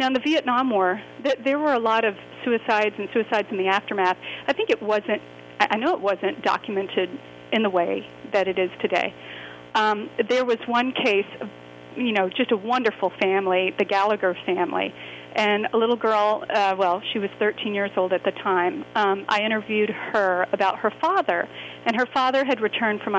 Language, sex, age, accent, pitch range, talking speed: English, female, 40-59, American, 185-235 Hz, 195 wpm